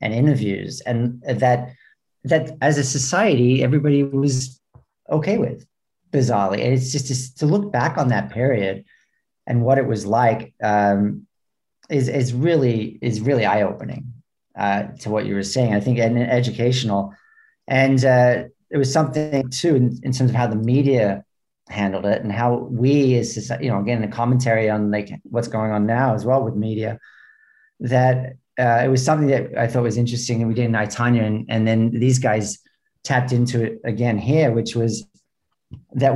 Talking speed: 180 wpm